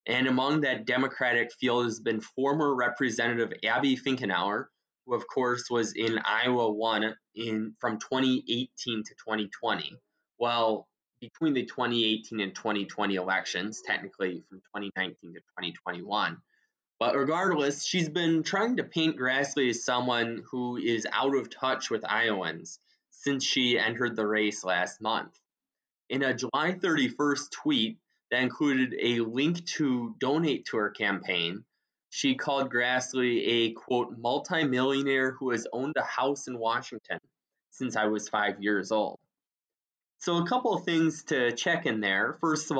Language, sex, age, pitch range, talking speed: English, male, 20-39, 110-135 Hz, 145 wpm